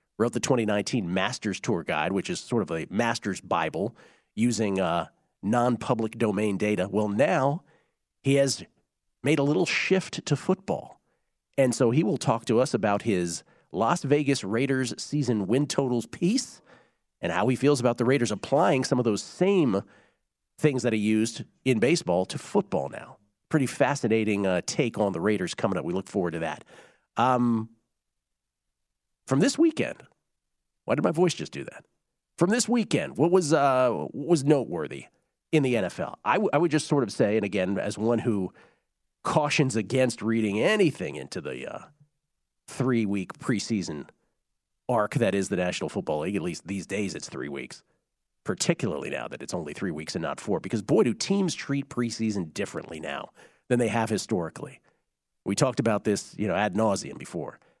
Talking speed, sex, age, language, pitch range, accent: 175 wpm, male, 40-59, English, 105-145 Hz, American